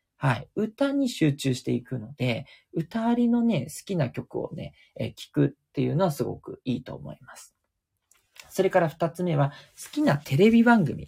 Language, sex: Japanese, male